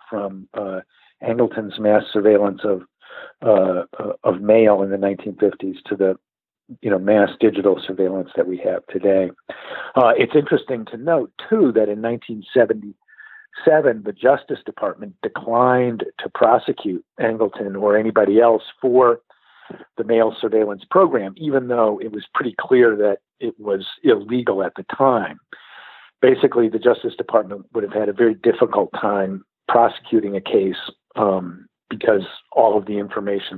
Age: 50-69